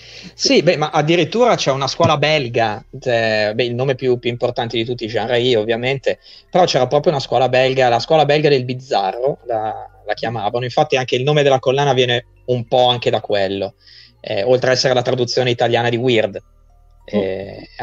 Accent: native